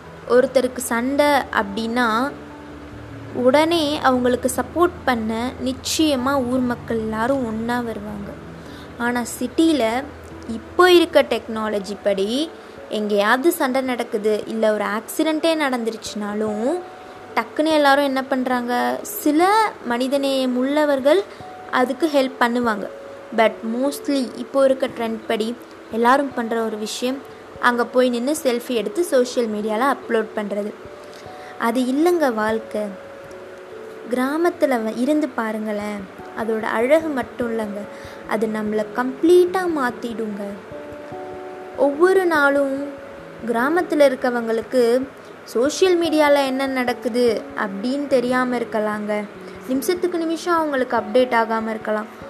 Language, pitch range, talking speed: Tamil, 220-280 Hz, 100 wpm